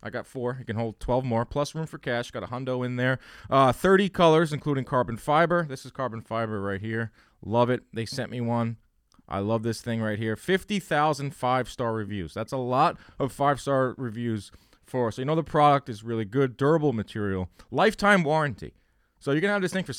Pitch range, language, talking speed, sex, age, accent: 110-150 Hz, English, 215 wpm, male, 30-49, American